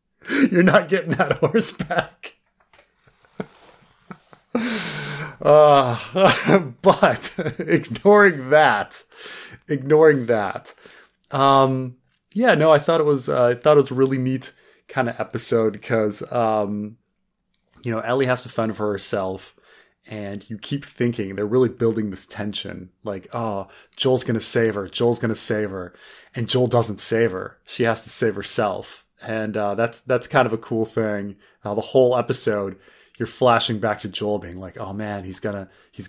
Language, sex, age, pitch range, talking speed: English, male, 30-49, 105-130 Hz, 155 wpm